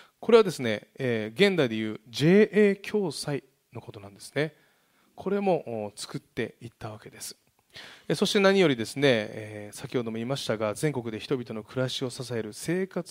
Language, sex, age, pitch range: Japanese, male, 20-39, 115-170 Hz